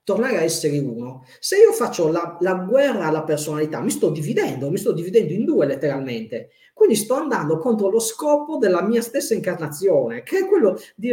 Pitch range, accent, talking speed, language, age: 160-265 Hz, native, 190 wpm, Italian, 40-59